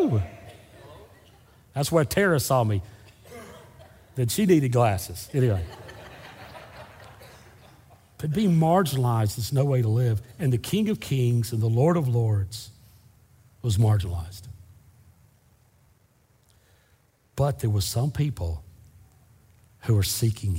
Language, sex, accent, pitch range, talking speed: English, male, American, 100-125 Hz, 110 wpm